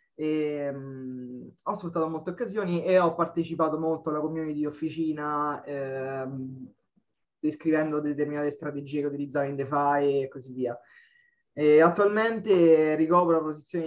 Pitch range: 145-170 Hz